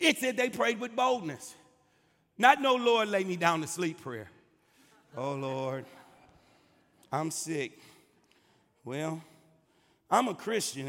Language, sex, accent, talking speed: English, male, American, 125 wpm